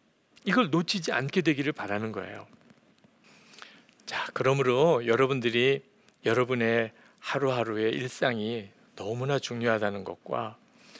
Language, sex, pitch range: Korean, male, 125-195 Hz